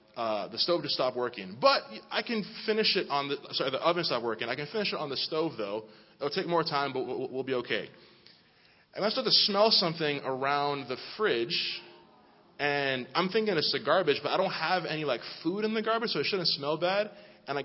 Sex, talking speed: male, 225 wpm